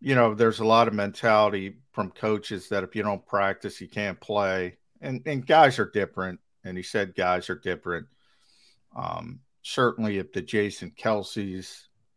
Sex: male